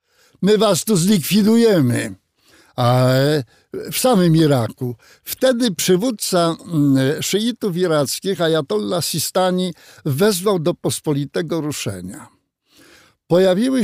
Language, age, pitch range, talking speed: Polish, 60-79, 150-225 Hz, 80 wpm